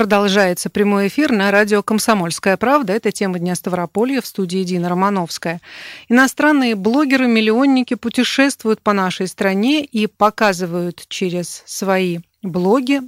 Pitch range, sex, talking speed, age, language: 185-225 Hz, female, 120 wpm, 40-59, Russian